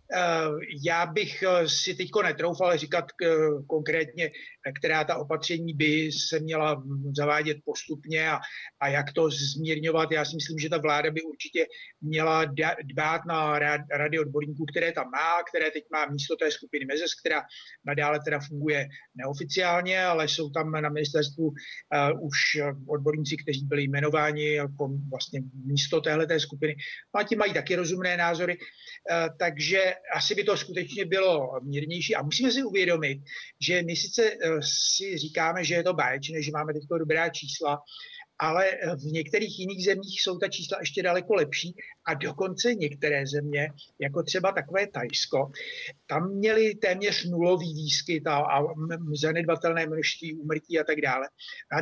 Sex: male